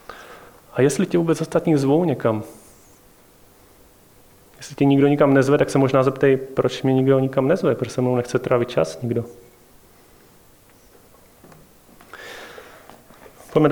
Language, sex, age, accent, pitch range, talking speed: Czech, male, 30-49, native, 125-150 Hz, 125 wpm